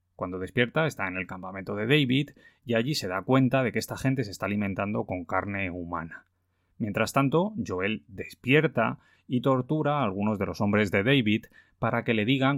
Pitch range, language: 95-125 Hz, Spanish